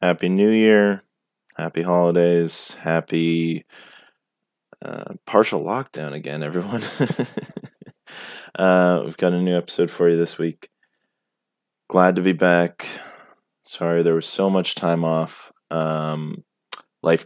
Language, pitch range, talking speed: English, 85-95 Hz, 120 wpm